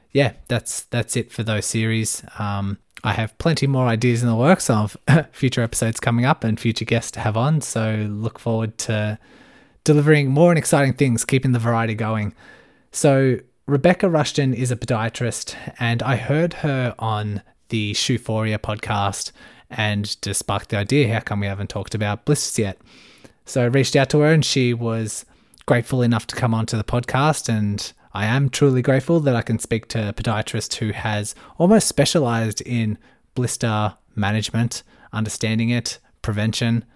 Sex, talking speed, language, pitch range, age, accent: male, 170 wpm, English, 110-130 Hz, 20-39, Australian